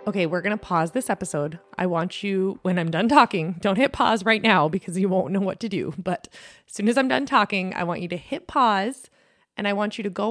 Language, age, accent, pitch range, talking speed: English, 20-39, American, 170-210 Hz, 260 wpm